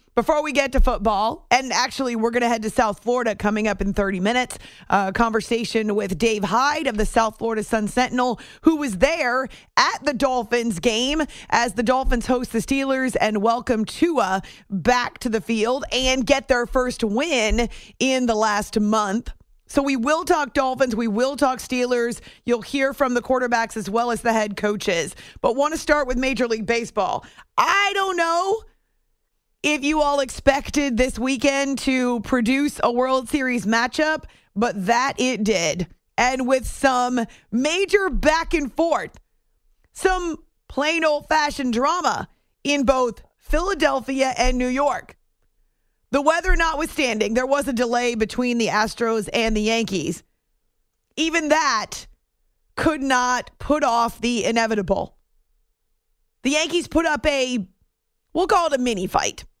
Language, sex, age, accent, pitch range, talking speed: English, female, 30-49, American, 230-285 Hz, 155 wpm